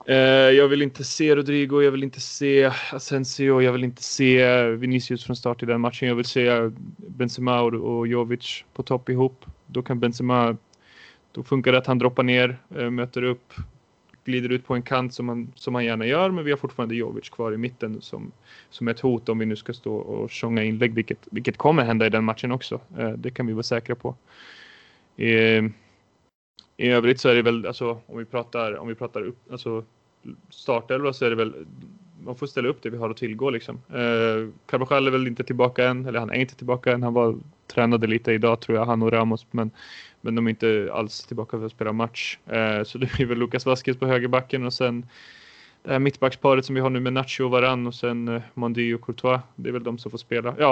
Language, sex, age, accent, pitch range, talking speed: Swedish, male, 20-39, native, 115-130 Hz, 220 wpm